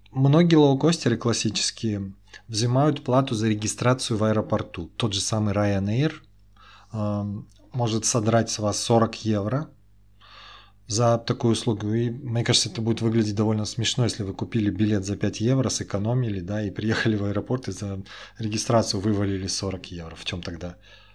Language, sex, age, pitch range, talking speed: Russian, male, 20-39, 100-115 Hz, 150 wpm